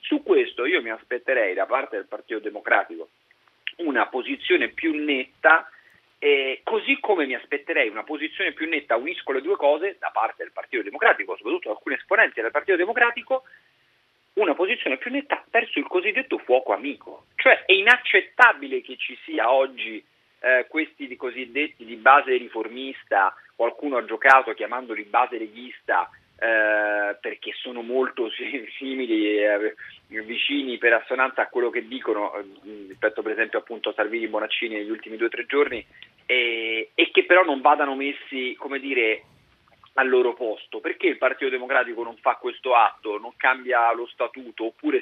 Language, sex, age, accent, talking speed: Italian, male, 40-59, native, 155 wpm